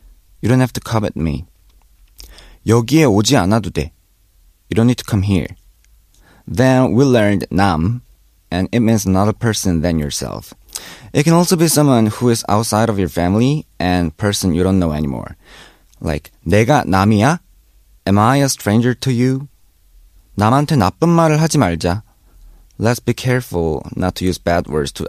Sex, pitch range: male, 85-130 Hz